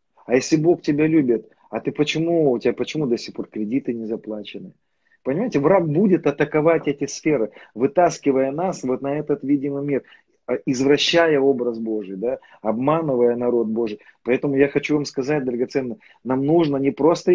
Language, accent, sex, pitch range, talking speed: Russian, native, male, 120-150 Hz, 165 wpm